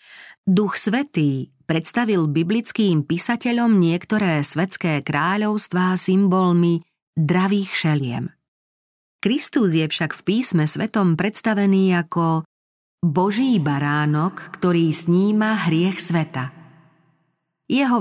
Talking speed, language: 85 wpm, Slovak